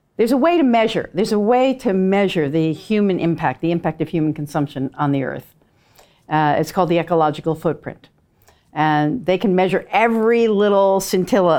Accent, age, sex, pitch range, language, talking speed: American, 50-69, female, 155-205 Hz, English, 175 wpm